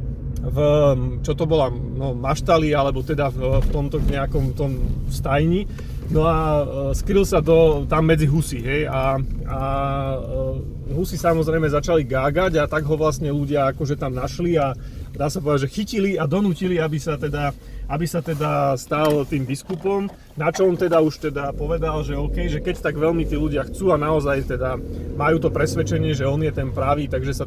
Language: Slovak